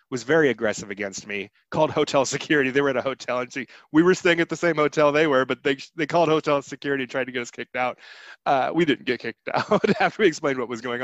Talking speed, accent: 265 wpm, American